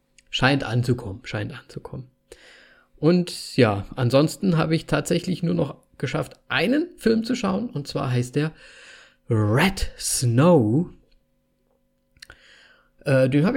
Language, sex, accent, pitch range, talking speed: German, male, German, 130-180 Hz, 115 wpm